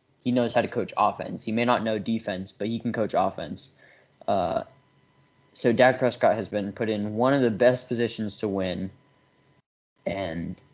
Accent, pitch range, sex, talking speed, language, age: American, 100-120 Hz, male, 180 wpm, English, 10-29